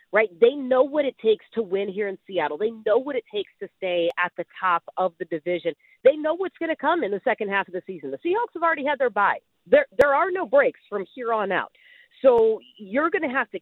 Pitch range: 200-305 Hz